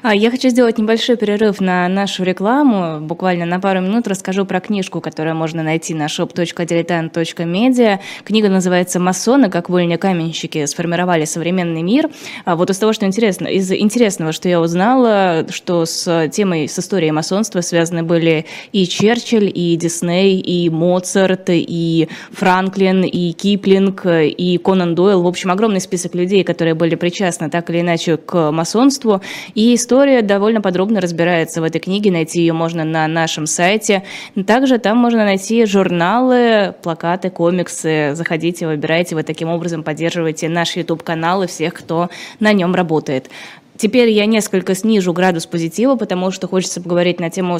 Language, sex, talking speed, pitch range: Russian, female, 150 wpm, 165-200 Hz